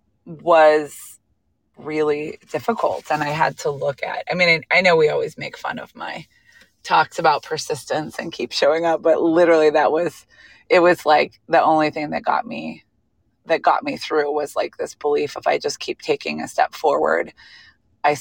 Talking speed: 185 wpm